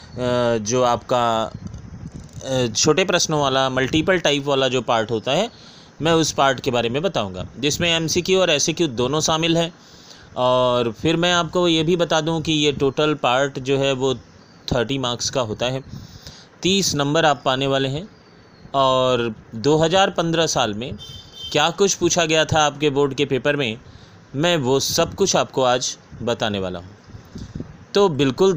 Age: 30-49